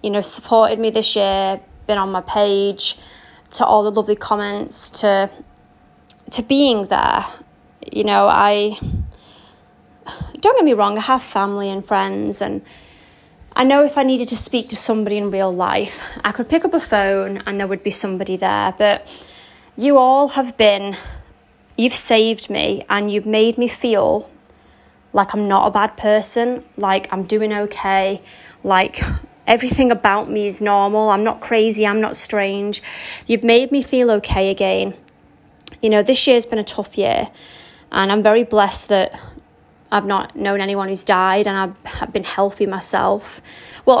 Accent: British